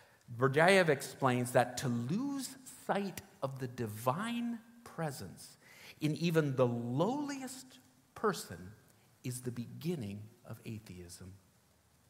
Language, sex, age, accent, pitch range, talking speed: English, male, 50-69, American, 115-180 Hz, 100 wpm